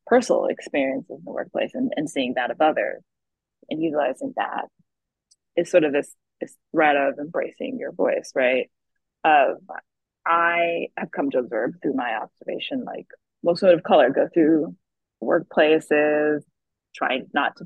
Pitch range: 145-220 Hz